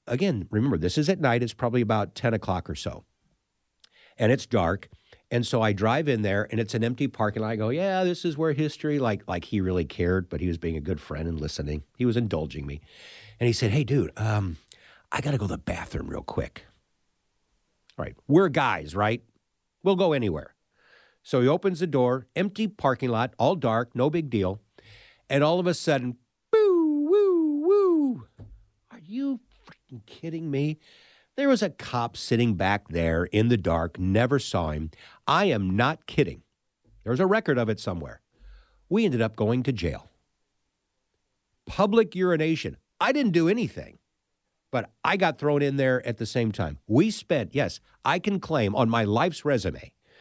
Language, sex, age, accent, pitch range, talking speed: English, male, 50-69, American, 100-155 Hz, 190 wpm